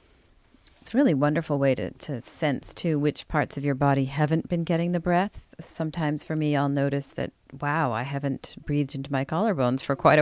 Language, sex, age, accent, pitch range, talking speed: English, female, 40-59, American, 145-175 Hz, 190 wpm